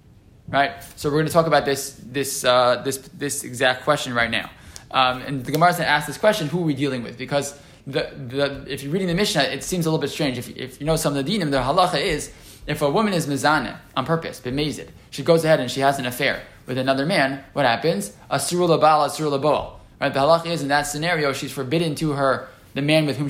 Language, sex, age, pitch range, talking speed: English, male, 20-39, 130-155 Hz, 245 wpm